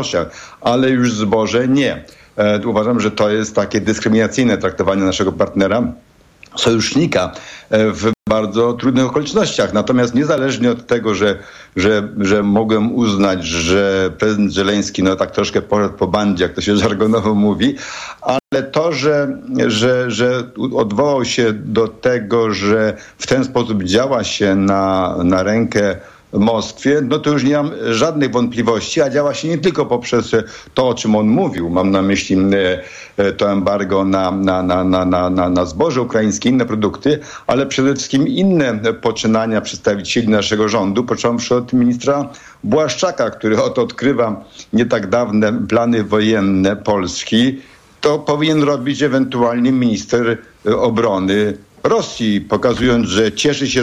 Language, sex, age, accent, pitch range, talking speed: Polish, male, 60-79, native, 105-135 Hz, 140 wpm